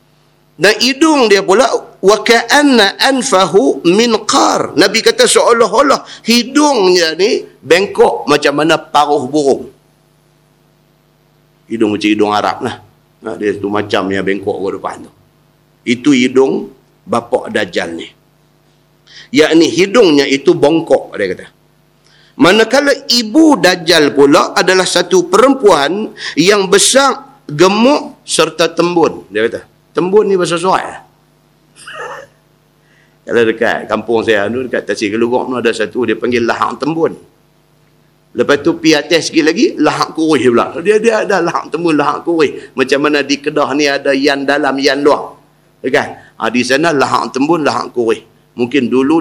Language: Malay